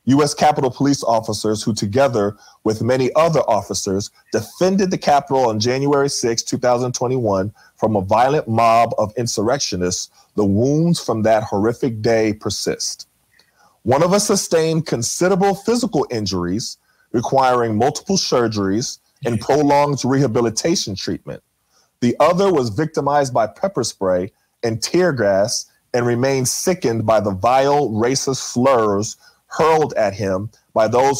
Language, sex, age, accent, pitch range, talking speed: English, male, 30-49, American, 110-145 Hz, 130 wpm